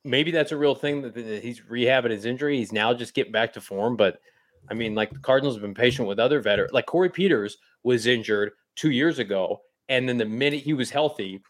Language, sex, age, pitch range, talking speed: English, male, 20-39, 120-150 Hz, 230 wpm